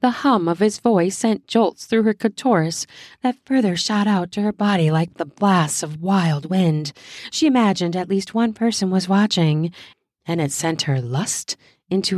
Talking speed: 180 wpm